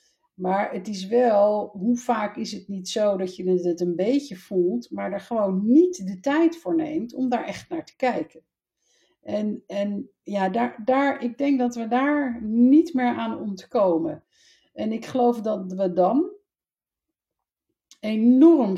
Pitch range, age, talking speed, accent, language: 180-235 Hz, 50-69, 155 wpm, Dutch, Dutch